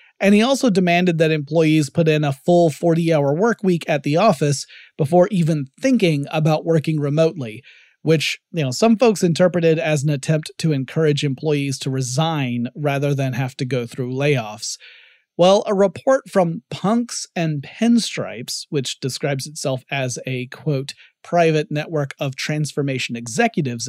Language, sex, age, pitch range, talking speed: English, male, 30-49, 135-165 Hz, 155 wpm